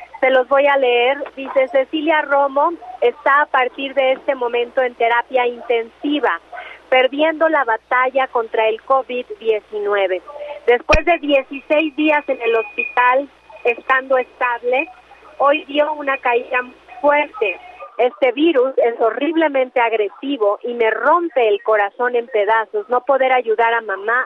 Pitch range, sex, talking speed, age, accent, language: 235-285 Hz, female, 135 wpm, 40-59, Mexican, Spanish